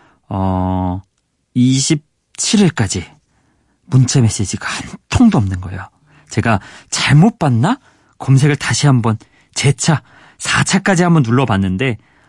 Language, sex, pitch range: Korean, male, 100-140 Hz